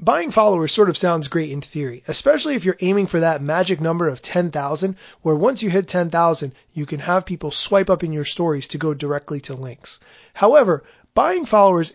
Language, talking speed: English, 200 wpm